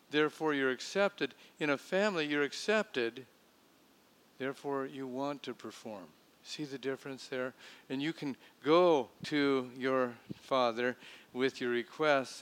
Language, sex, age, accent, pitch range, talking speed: English, male, 50-69, American, 130-175 Hz, 130 wpm